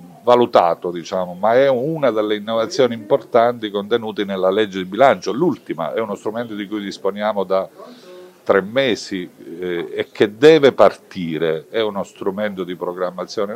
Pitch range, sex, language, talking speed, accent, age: 85-120 Hz, male, Italian, 145 wpm, native, 40-59